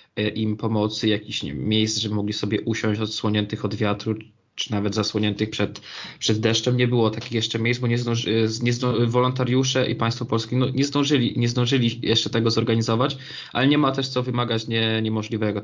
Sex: male